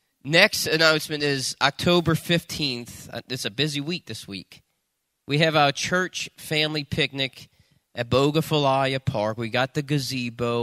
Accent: American